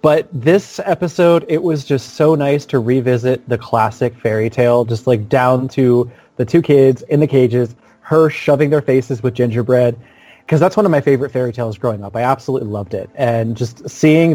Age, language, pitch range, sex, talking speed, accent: 20-39, English, 115-140 Hz, male, 195 wpm, American